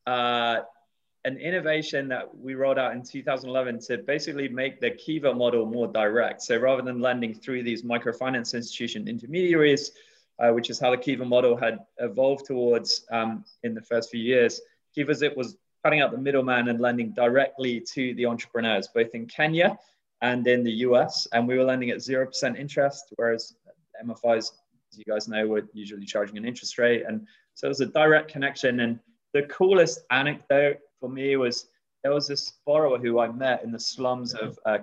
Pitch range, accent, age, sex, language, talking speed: 115-135 Hz, British, 20-39, male, English, 185 wpm